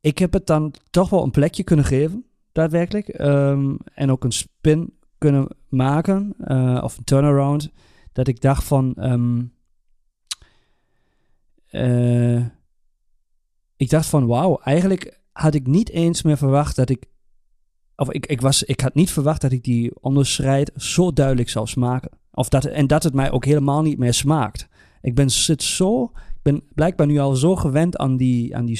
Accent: Dutch